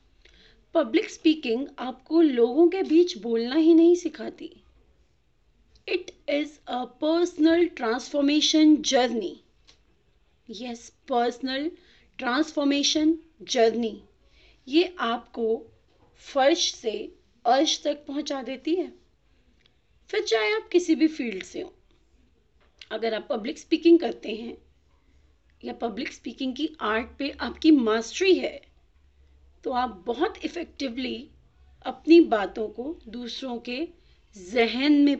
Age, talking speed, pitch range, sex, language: 30-49, 105 wpm, 240-335 Hz, female, Hindi